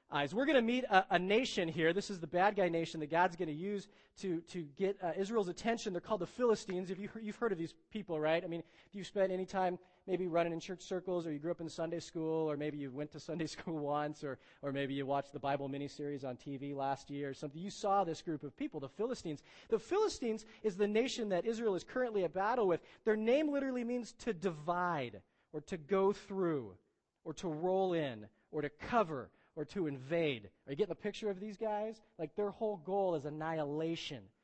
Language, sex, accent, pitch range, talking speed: English, male, American, 150-200 Hz, 230 wpm